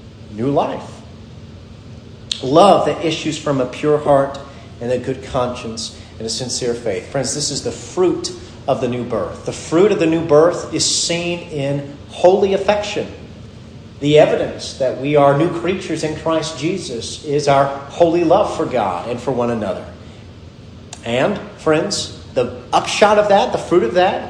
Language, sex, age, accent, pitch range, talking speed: English, male, 40-59, American, 120-175 Hz, 165 wpm